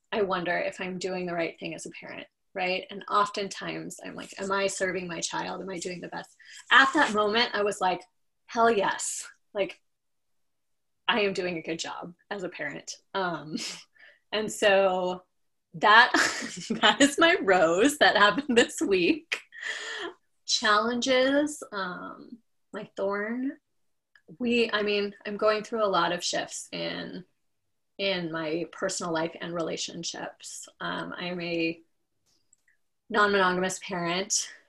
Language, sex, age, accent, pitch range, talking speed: English, female, 20-39, American, 180-225 Hz, 145 wpm